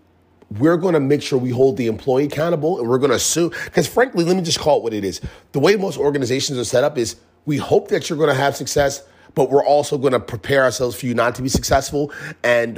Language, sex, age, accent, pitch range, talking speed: English, male, 30-49, American, 90-145 Hz, 260 wpm